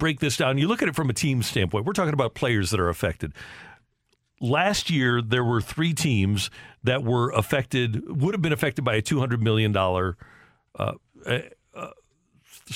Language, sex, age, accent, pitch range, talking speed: English, male, 50-69, American, 110-145 Hz, 175 wpm